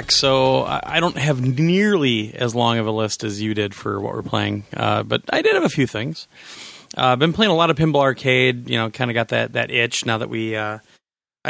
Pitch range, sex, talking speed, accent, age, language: 115-145 Hz, male, 240 wpm, American, 30-49, English